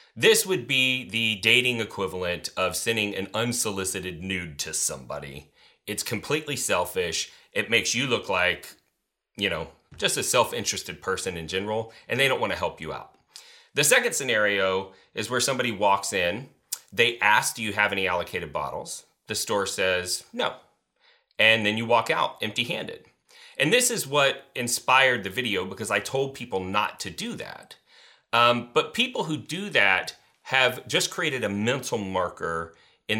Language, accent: English, American